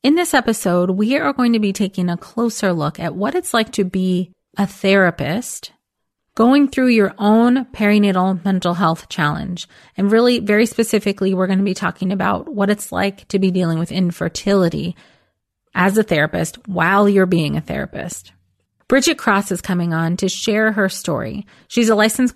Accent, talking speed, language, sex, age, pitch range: American, 175 wpm, English, female, 30-49, 180-215 Hz